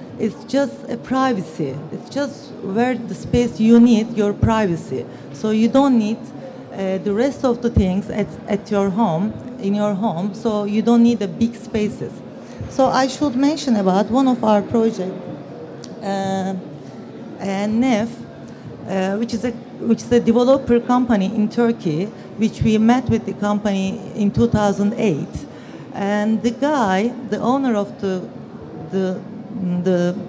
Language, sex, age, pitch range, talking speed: English, female, 40-59, 190-235 Hz, 155 wpm